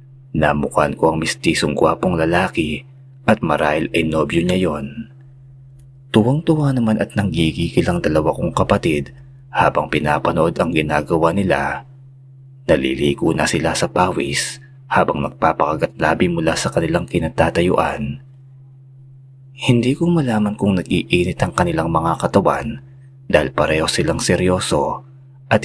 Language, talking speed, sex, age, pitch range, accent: Filipino, 115 wpm, male, 30-49, 80-135 Hz, native